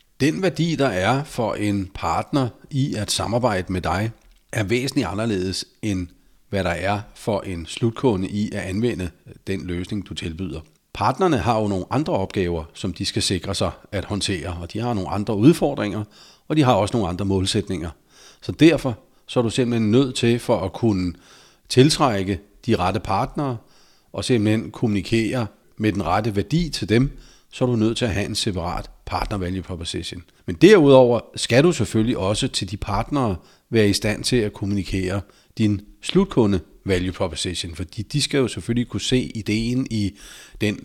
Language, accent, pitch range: Danish, native, 95-120 Hz